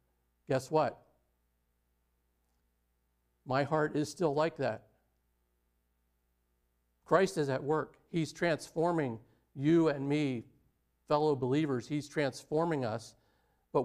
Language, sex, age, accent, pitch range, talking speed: English, male, 50-69, American, 115-150 Hz, 100 wpm